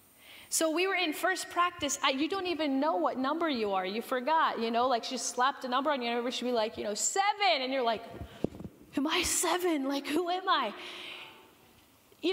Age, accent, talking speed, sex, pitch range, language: 30-49, American, 215 wpm, female, 235-310 Hz, English